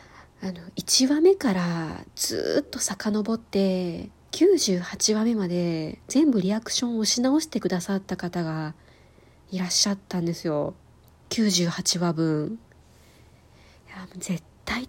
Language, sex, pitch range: Japanese, female, 180-225 Hz